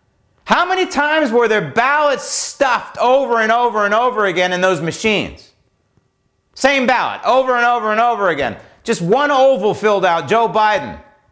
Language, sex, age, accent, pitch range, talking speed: English, male, 40-59, American, 145-215 Hz, 165 wpm